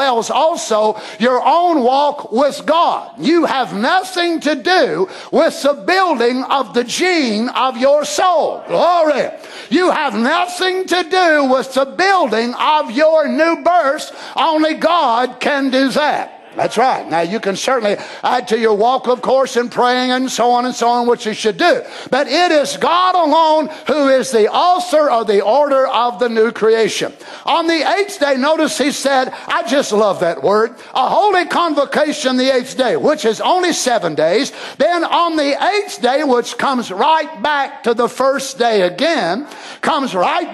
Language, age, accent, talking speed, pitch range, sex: English, 50-69, American, 175 wpm, 255-330 Hz, male